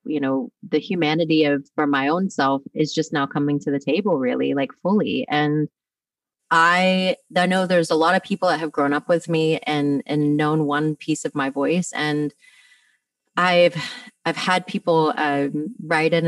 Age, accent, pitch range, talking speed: 30-49, American, 150-185 Hz, 185 wpm